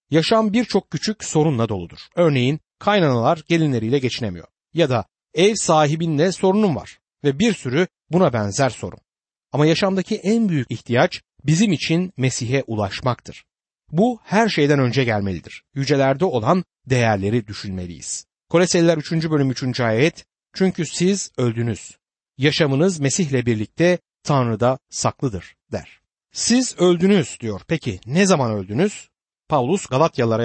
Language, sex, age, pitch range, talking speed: Turkish, male, 60-79, 125-180 Hz, 120 wpm